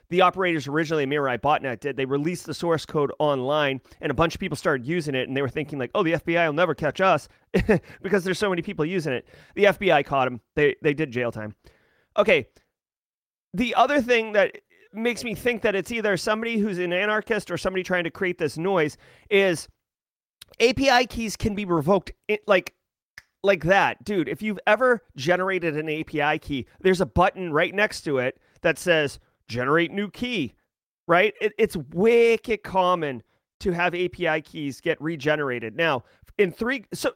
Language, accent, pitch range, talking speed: English, American, 150-210 Hz, 185 wpm